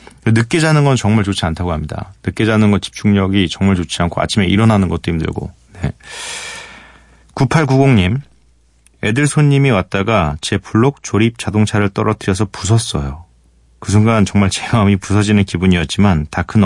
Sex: male